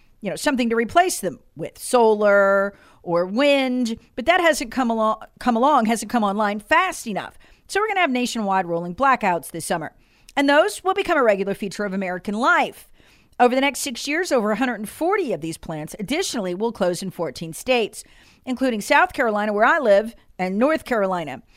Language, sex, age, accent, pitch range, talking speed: English, female, 40-59, American, 190-285 Hz, 185 wpm